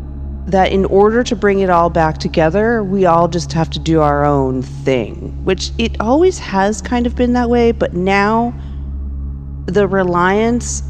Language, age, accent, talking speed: English, 40-59, American, 170 wpm